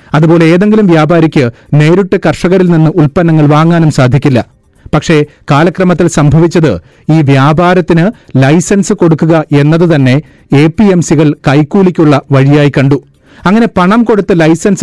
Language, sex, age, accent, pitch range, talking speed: Malayalam, male, 30-49, native, 145-175 Hz, 105 wpm